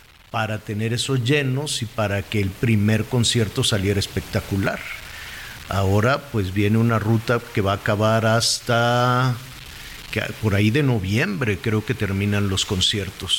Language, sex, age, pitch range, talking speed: Spanish, male, 50-69, 110-150 Hz, 145 wpm